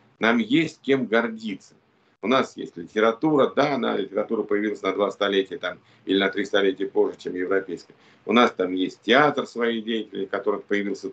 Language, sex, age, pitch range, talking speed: Russian, male, 50-69, 105-135 Hz, 175 wpm